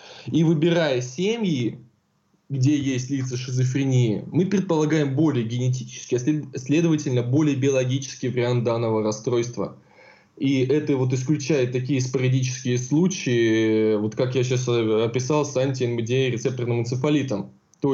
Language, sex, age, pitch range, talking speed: Russian, male, 20-39, 120-145 Hz, 120 wpm